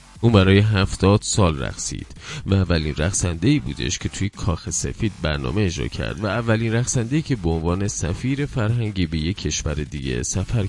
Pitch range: 80-105 Hz